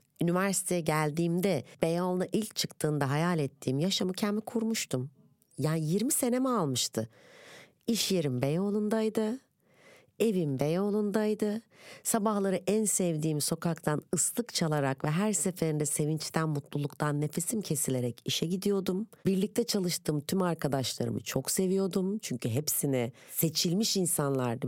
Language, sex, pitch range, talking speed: Turkish, female, 150-210 Hz, 105 wpm